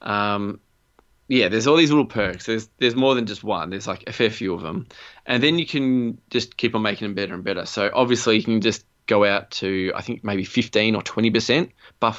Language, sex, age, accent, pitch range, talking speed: English, male, 20-39, Australian, 100-120 Hz, 235 wpm